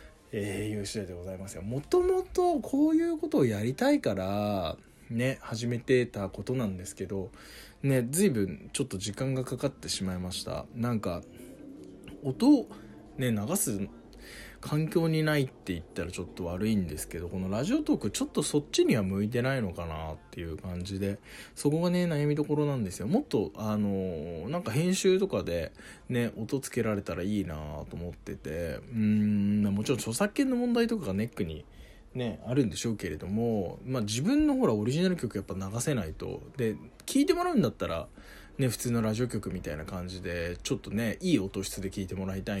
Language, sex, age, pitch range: Japanese, male, 20-39, 95-140 Hz